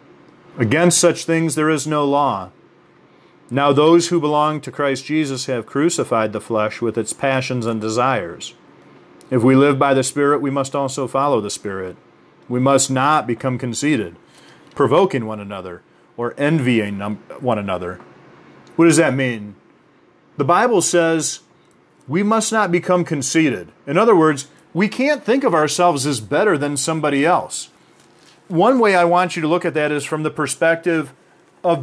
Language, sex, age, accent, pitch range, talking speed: English, male, 40-59, American, 130-170 Hz, 160 wpm